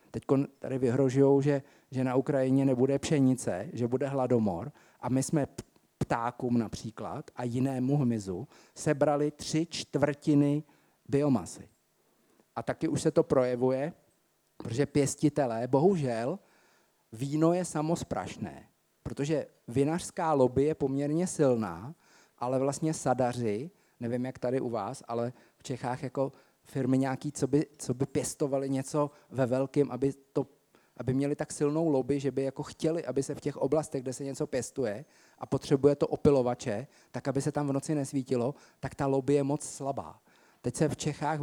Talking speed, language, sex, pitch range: 150 wpm, Slovak, male, 125-150 Hz